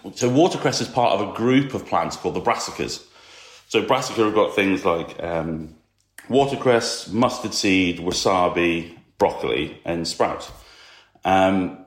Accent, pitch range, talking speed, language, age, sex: British, 90-110 Hz, 135 wpm, English, 40-59, male